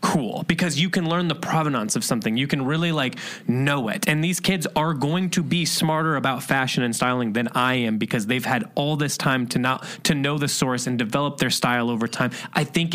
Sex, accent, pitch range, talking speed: male, American, 120-165 Hz, 230 wpm